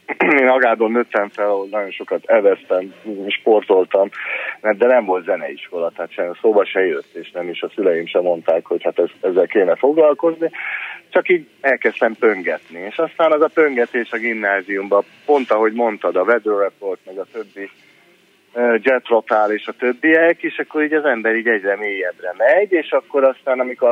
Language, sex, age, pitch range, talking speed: Hungarian, male, 40-59, 115-160 Hz, 165 wpm